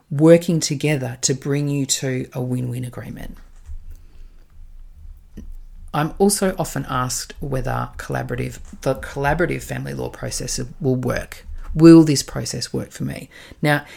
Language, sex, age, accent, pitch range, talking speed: English, female, 40-59, Australian, 125-165 Hz, 125 wpm